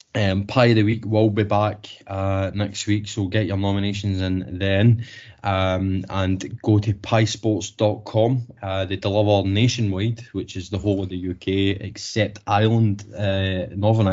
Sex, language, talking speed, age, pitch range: male, English, 155 wpm, 20-39, 95-110 Hz